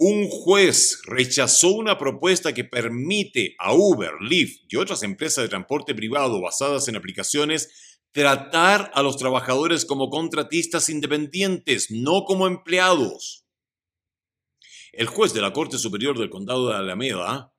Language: Spanish